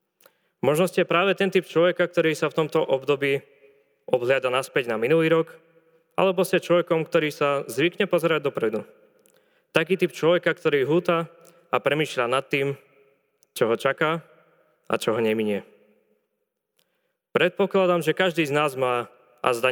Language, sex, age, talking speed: Slovak, male, 20-39, 145 wpm